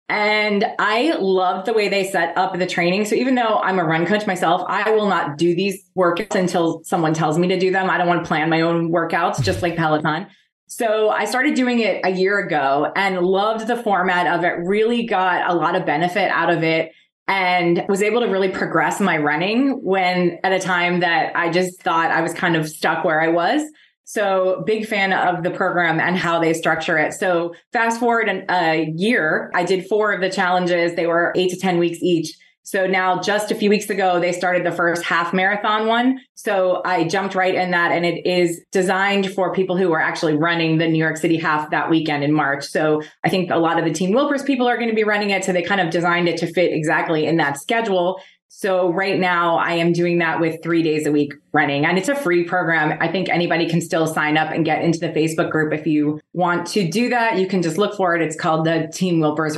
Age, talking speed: 20-39, 235 wpm